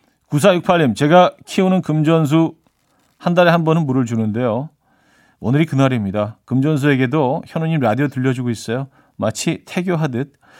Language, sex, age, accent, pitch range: Korean, male, 40-59, native, 115-175 Hz